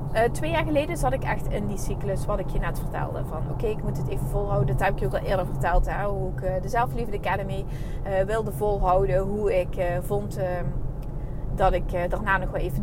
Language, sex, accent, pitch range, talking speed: Dutch, female, Dutch, 135-180 Hz, 250 wpm